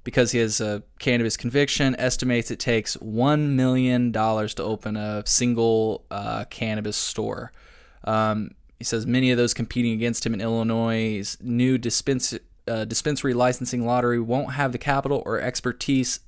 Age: 20-39